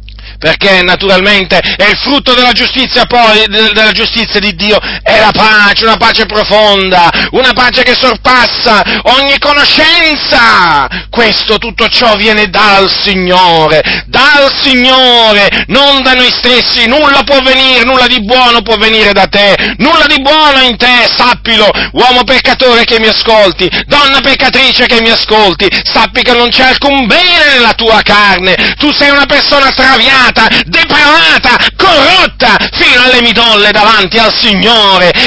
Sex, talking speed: male, 140 wpm